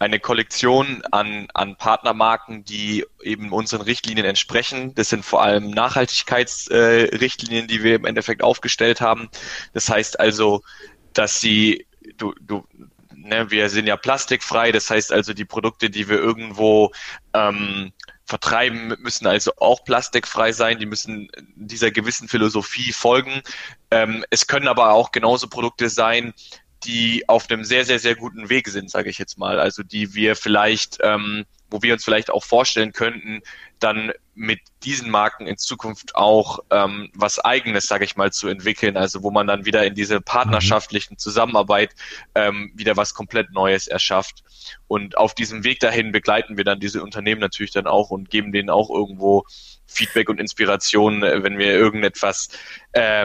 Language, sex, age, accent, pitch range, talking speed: English, male, 20-39, German, 105-115 Hz, 160 wpm